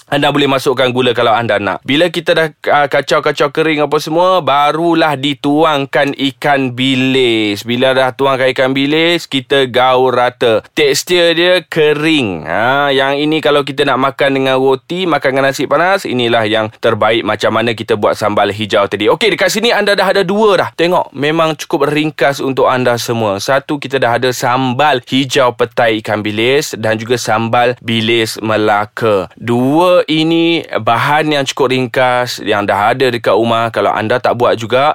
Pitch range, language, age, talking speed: 120-150 Hz, Malay, 20-39, 170 wpm